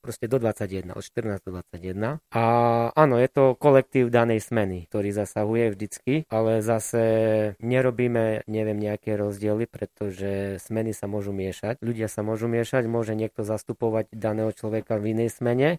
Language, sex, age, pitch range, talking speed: Slovak, male, 20-39, 110-130 Hz, 150 wpm